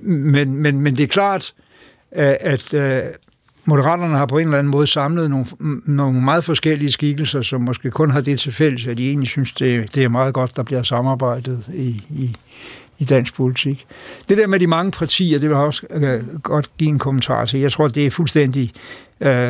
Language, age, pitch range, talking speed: Danish, 60-79, 130-155 Hz, 190 wpm